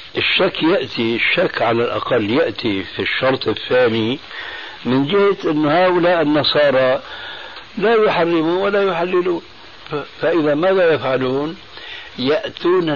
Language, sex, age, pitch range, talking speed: Arabic, male, 60-79, 115-160 Hz, 100 wpm